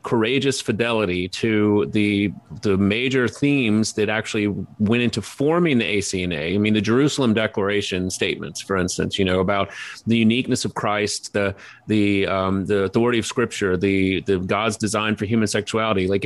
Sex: male